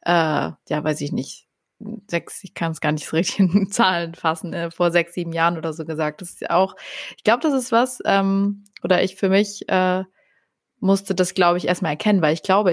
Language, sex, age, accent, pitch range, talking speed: German, female, 20-39, German, 165-185 Hz, 225 wpm